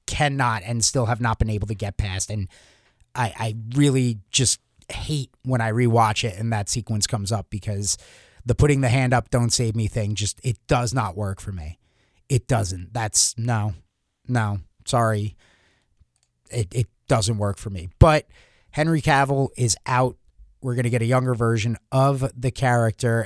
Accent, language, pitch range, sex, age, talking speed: American, English, 110-135 Hz, male, 30-49, 175 wpm